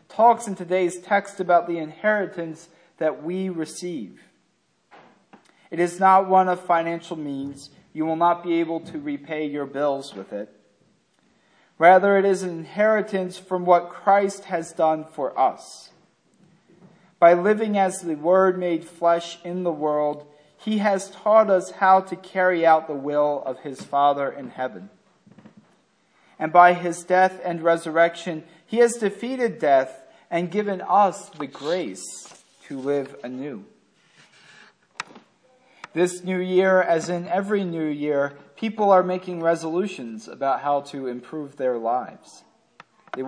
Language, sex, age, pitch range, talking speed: English, male, 40-59, 150-190 Hz, 140 wpm